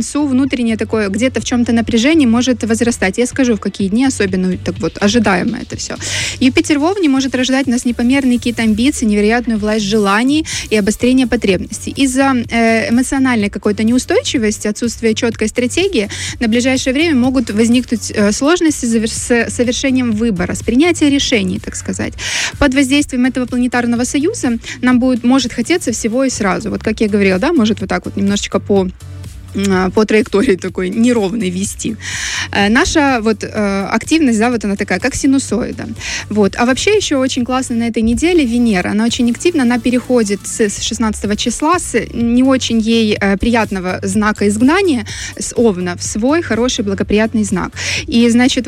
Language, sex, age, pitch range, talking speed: Russian, female, 20-39, 210-255 Hz, 160 wpm